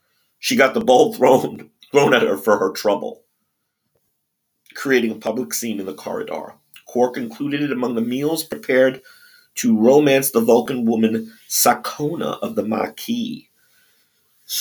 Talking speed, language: 140 wpm, English